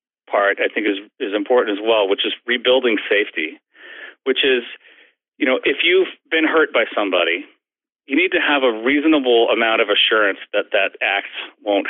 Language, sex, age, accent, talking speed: English, male, 30-49, American, 175 wpm